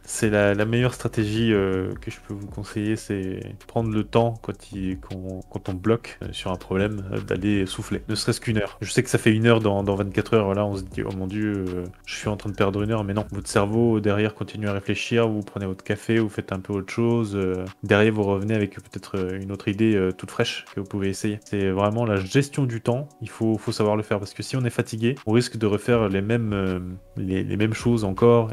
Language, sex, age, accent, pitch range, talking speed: French, male, 20-39, French, 100-115 Hz, 265 wpm